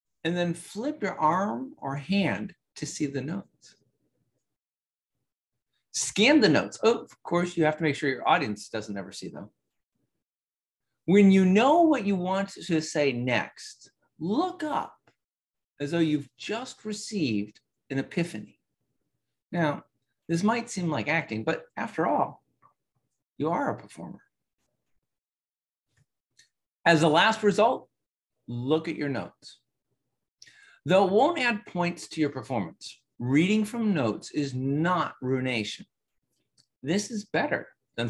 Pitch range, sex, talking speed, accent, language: 130-195 Hz, male, 135 wpm, American, English